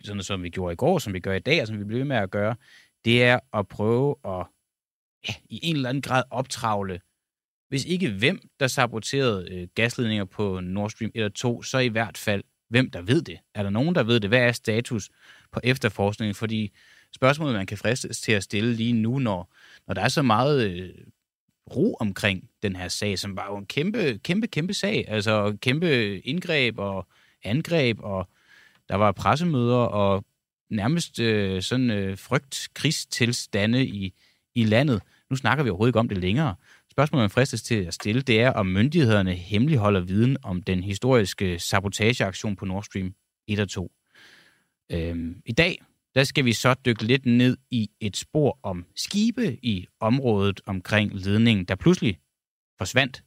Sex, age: male, 30-49